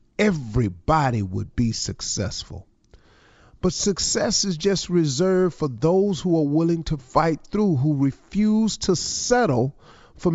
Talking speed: 130 wpm